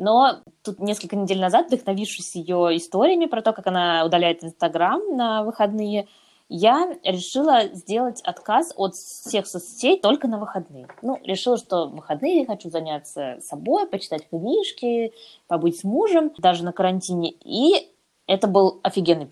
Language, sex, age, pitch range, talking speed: Russian, female, 20-39, 175-240 Hz, 145 wpm